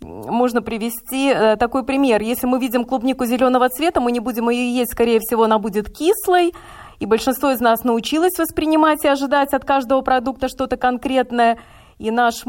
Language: Russian